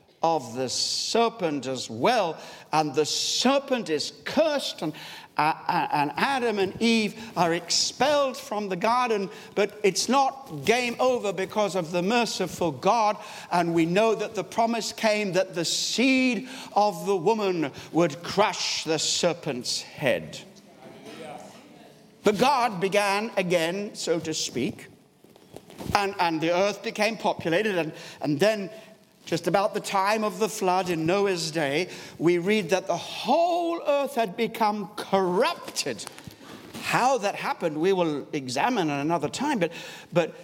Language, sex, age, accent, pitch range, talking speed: English, male, 60-79, British, 165-225 Hz, 140 wpm